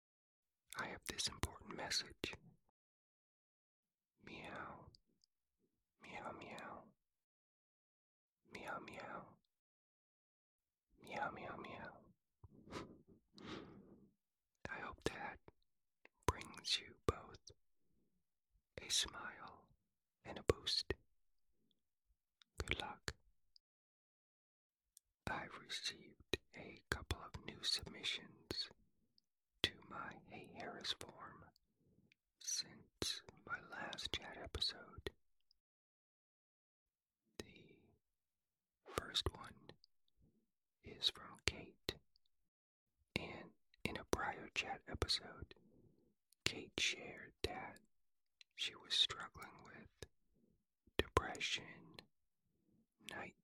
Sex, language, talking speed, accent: male, English, 65 wpm, American